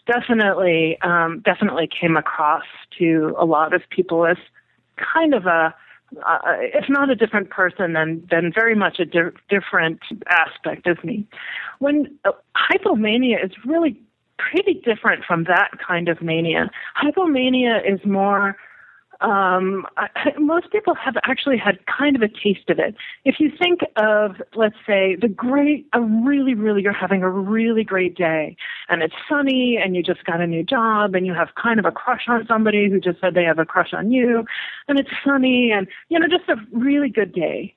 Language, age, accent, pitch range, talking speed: English, 30-49, American, 180-255 Hz, 185 wpm